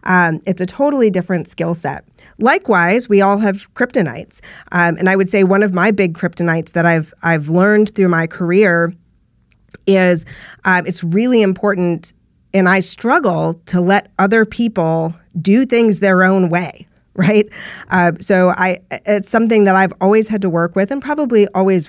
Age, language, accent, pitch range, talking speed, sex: 40-59, English, American, 160-195 Hz, 170 wpm, female